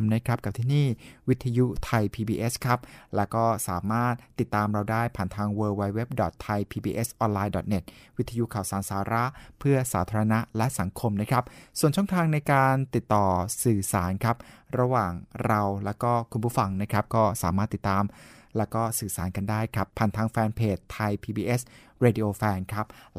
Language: Thai